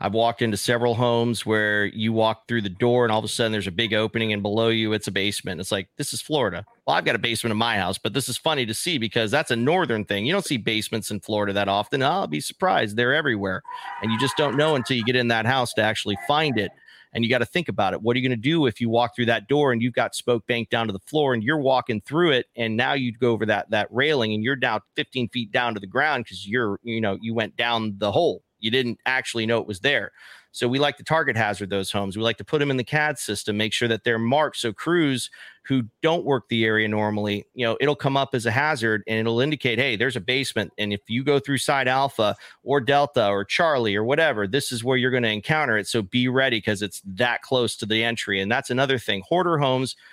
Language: English